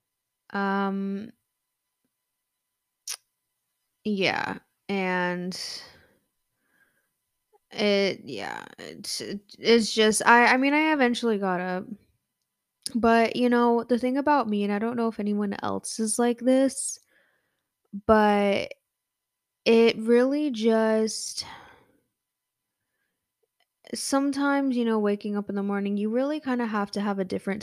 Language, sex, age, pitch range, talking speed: English, female, 10-29, 190-235 Hz, 115 wpm